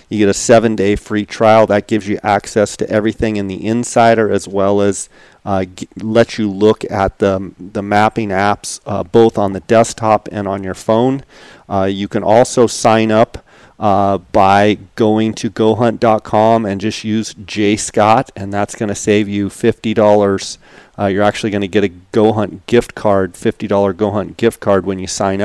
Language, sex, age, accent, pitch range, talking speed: English, male, 40-59, American, 100-115 Hz, 185 wpm